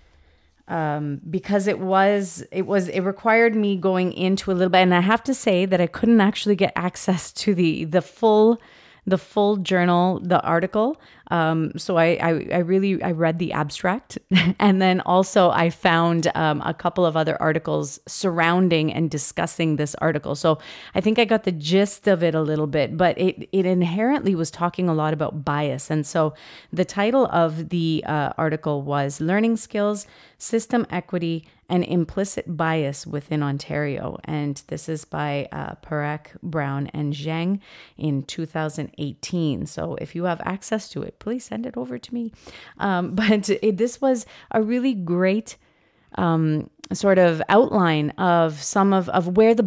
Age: 30-49